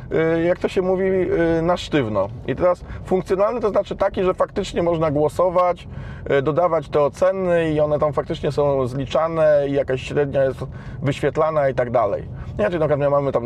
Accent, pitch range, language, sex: native, 130-170 Hz, Polish, male